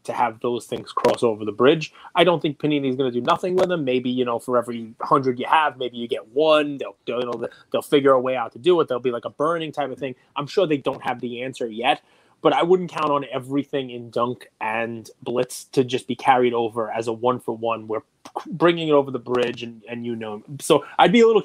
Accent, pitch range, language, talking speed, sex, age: American, 125-155 Hz, English, 260 wpm, male, 20-39